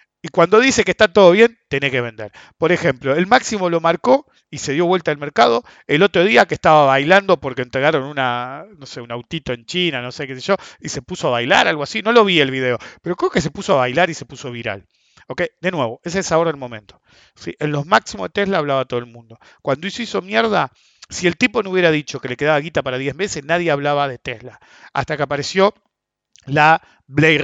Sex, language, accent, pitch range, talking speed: male, English, Argentinian, 130-175 Hz, 240 wpm